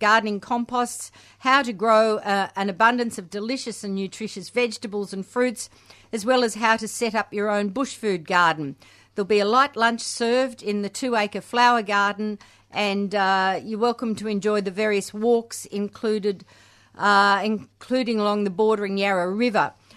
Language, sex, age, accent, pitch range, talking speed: English, female, 50-69, Australian, 195-235 Hz, 165 wpm